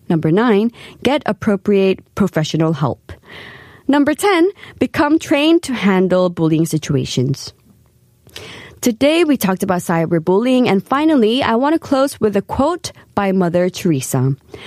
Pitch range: 175-270 Hz